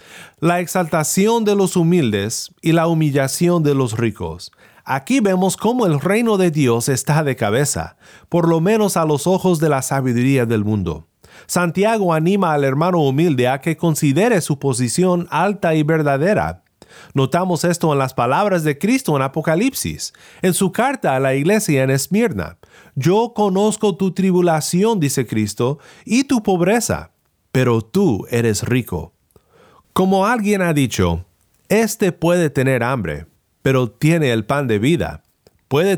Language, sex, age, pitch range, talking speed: Spanish, male, 40-59, 130-190 Hz, 150 wpm